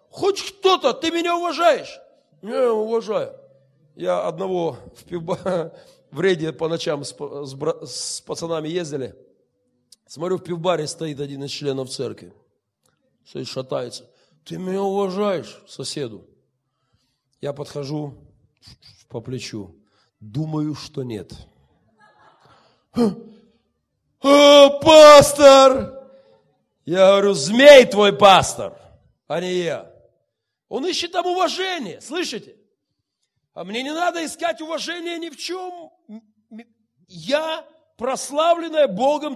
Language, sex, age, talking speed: Russian, male, 40-59, 100 wpm